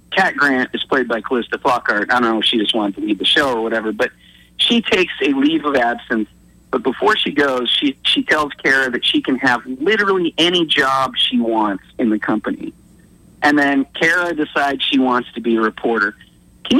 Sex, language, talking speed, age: male, English, 205 wpm, 40-59